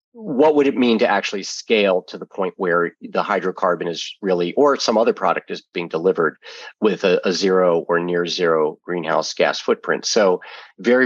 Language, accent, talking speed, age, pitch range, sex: English, American, 185 wpm, 40-59, 90-105 Hz, male